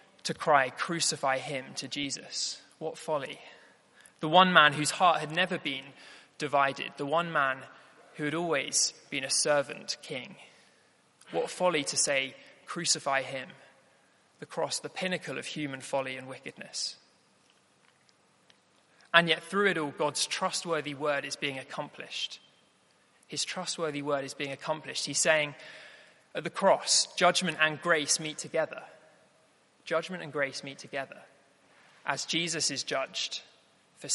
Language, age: English, 20-39